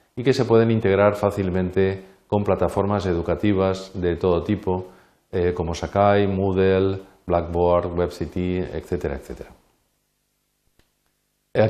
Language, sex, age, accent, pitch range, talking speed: Spanish, male, 40-59, Spanish, 90-105 Hz, 105 wpm